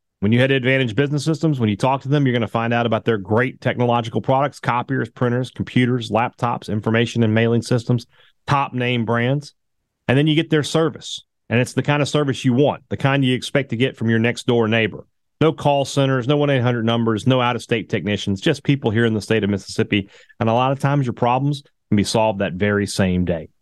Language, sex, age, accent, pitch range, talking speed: English, male, 30-49, American, 115-145 Hz, 225 wpm